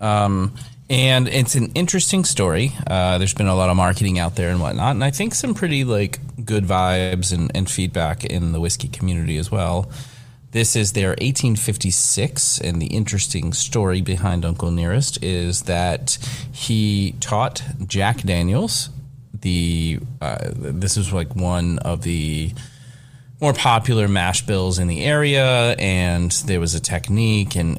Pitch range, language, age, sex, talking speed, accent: 90-125 Hz, English, 30-49, male, 155 wpm, American